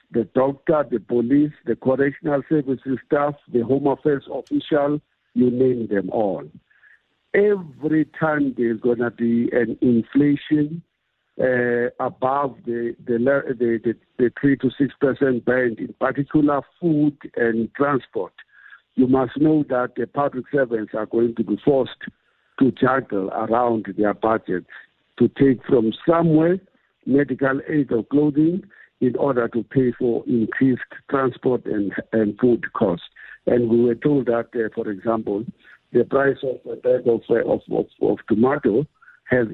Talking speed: 145 wpm